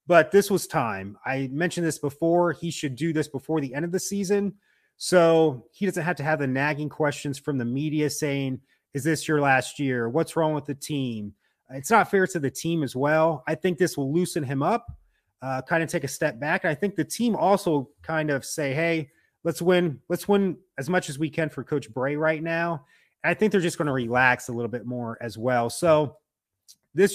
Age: 30-49